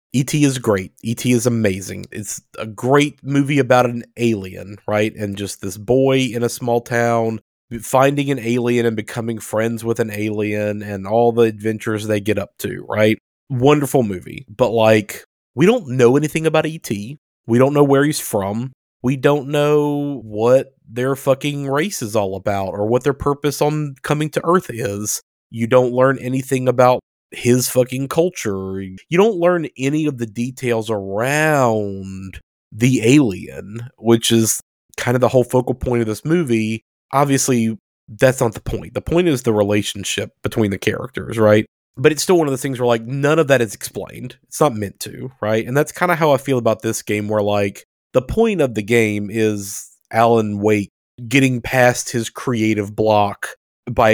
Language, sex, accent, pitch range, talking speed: English, male, American, 105-135 Hz, 180 wpm